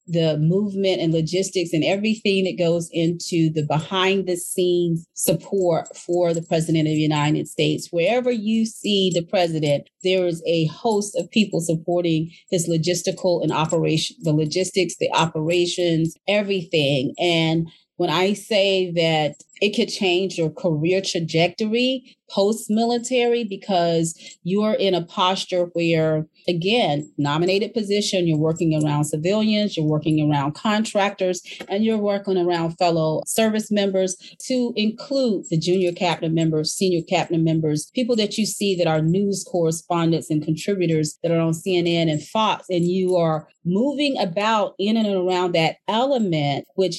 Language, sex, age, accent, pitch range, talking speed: English, female, 30-49, American, 165-195 Hz, 145 wpm